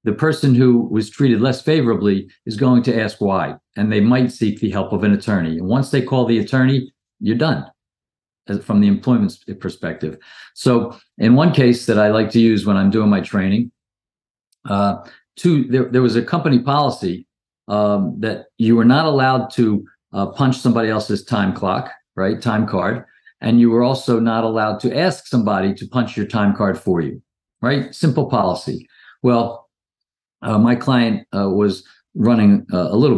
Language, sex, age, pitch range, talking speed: English, male, 50-69, 105-130 Hz, 185 wpm